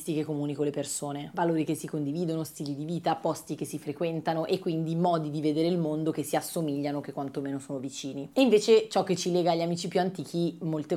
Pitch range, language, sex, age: 145-170 Hz, Italian, female, 20-39